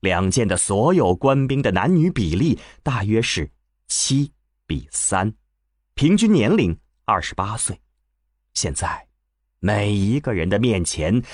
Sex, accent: male, native